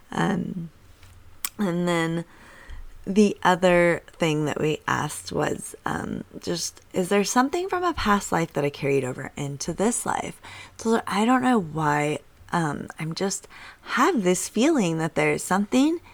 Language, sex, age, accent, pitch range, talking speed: English, female, 20-39, American, 145-180 Hz, 150 wpm